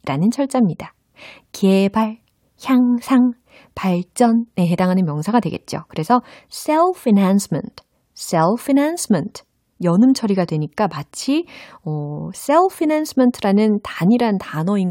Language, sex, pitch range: Korean, female, 170-275 Hz